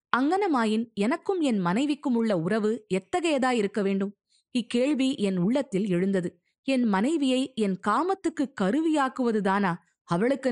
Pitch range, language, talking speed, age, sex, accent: 190-270 Hz, Tamil, 110 wpm, 20-39, female, native